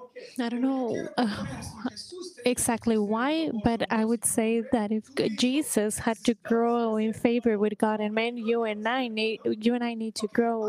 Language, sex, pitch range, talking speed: English, female, 225-255 Hz, 180 wpm